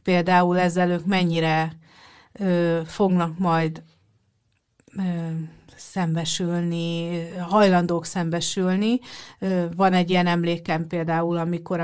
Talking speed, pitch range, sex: 90 wpm, 165-185 Hz, female